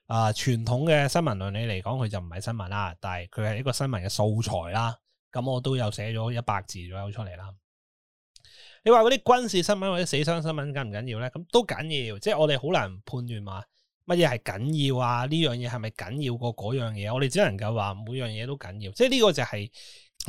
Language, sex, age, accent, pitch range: Chinese, male, 20-39, native, 110-155 Hz